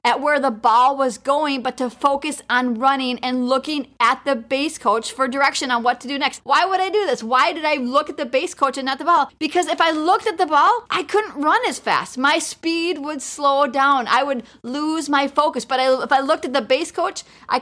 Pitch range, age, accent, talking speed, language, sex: 245-290 Hz, 30-49, American, 250 wpm, English, female